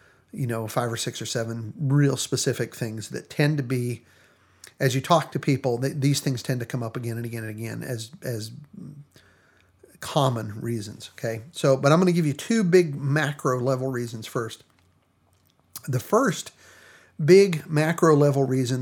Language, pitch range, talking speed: English, 125-150 Hz, 175 wpm